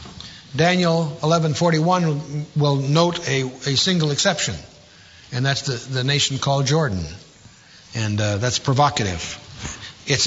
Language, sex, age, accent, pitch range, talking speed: English, male, 60-79, American, 130-180 Hz, 115 wpm